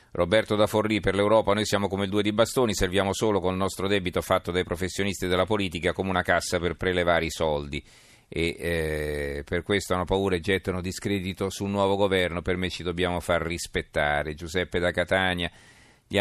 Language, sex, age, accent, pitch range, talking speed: Italian, male, 40-59, native, 85-100 Hz, 195 wpm